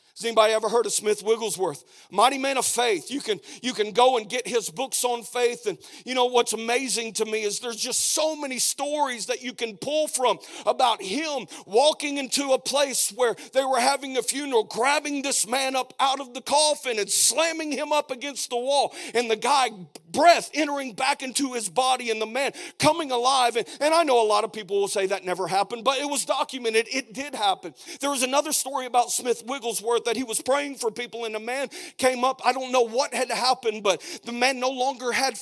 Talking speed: 220 wpm